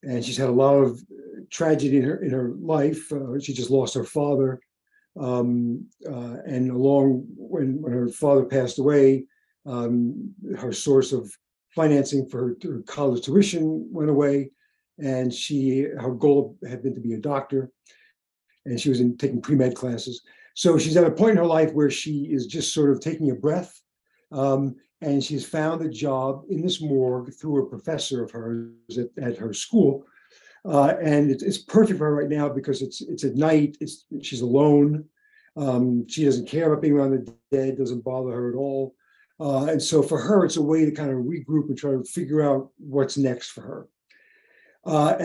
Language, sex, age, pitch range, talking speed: English, male, 60-79, 130-155 Hz, 195 wpm